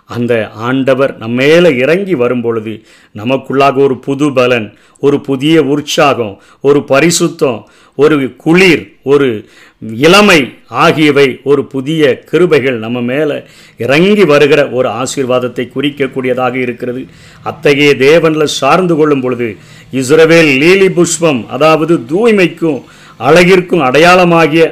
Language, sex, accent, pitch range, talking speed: Tamil, male, native, 125-165 Hz, 100 wpm